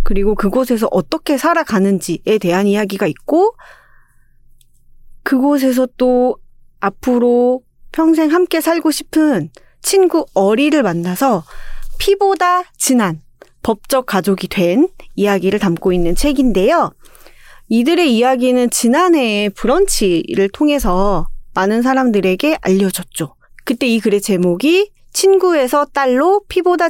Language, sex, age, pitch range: Korean, female, 30-49, 195-290 Hz